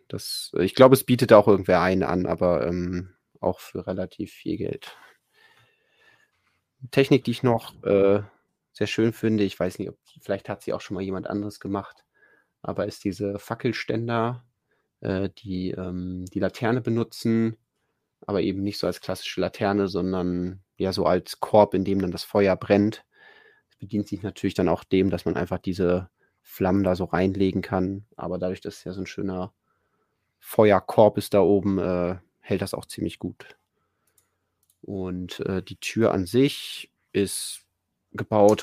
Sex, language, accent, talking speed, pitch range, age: male, German, German, 170 wpm, 95-110 Hz, 30-49